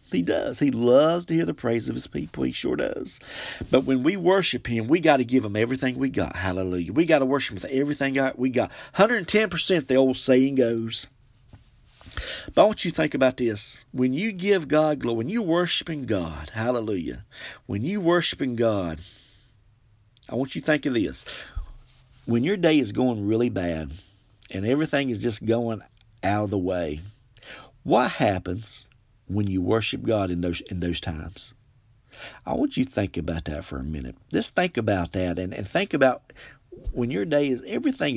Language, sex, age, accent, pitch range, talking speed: English, male, 40-59, American, 100-140 Hz, 190 wpm